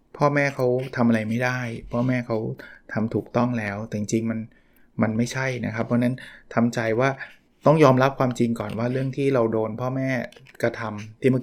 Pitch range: 115-140 Hz